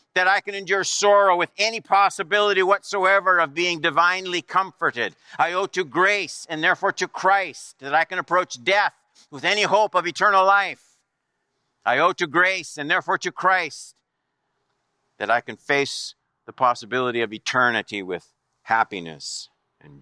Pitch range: 130-190 Hz